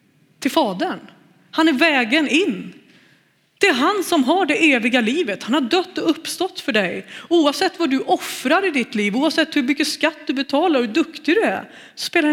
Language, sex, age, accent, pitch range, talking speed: Swedish, female, 30-49, native, 200-290 Hz, 190 wpm